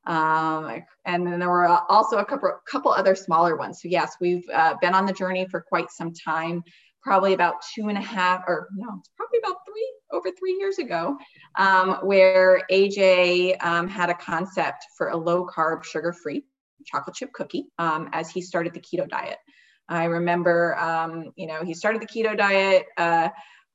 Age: 20-39